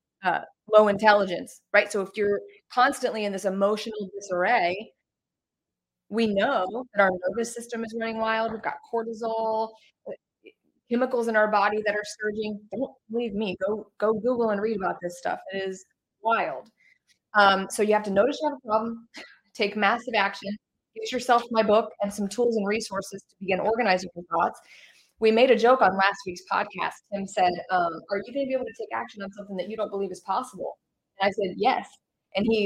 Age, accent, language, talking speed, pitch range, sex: 20-39, American, English, 195 wpm, 195-230 Hz, female